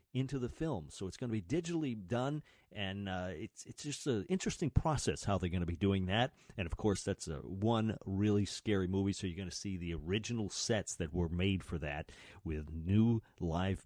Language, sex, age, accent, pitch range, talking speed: English, male, 40-59, American, 95-155 Hz, 215 wpm